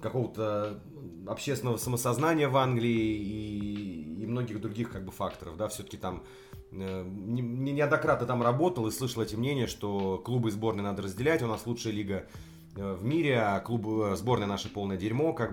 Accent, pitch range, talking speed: native, 95-120 Hz, 170 wpm